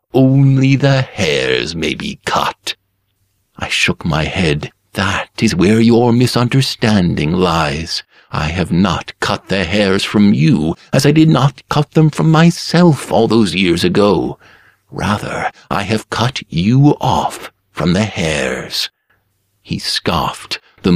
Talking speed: 135 wpm